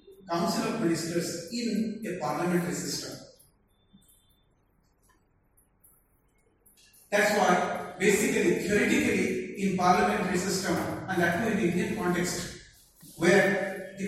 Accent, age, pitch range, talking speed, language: Indian, 40-59, 170-220 Hz, 90 wpm, English